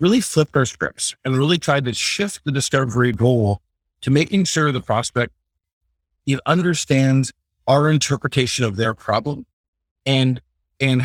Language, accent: English, American